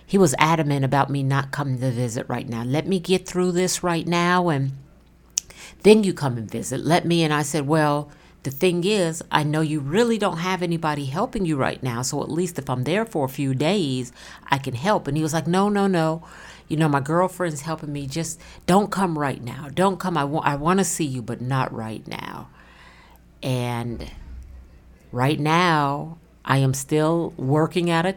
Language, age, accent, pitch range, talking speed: English, 50-69, American, 130-165 Hz, 200 wpm